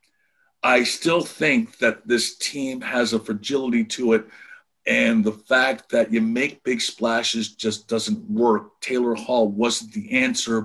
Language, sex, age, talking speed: English, male, 50-69, 150 wpm